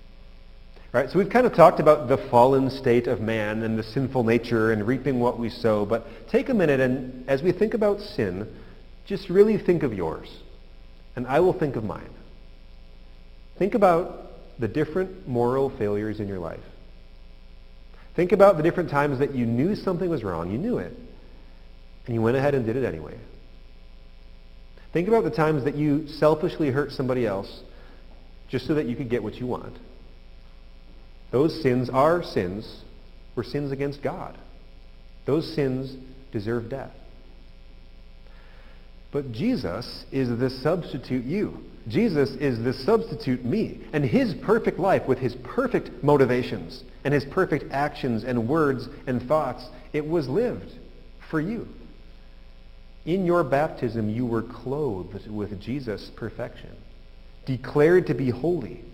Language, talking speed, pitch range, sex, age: English, 150 wpm, 110-150 Hz, male, 30-49